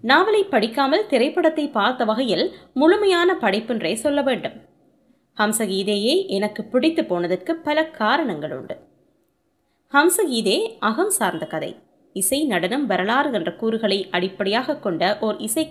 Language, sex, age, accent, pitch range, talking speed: Tamil, female, 20-39, native, 210-300 Hz, 110 wpm